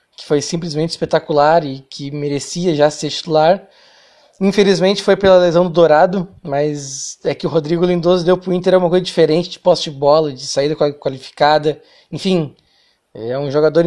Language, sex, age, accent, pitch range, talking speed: Portuguese, male, 20-39, Brazilian, 145-175 Hz, 175 wpm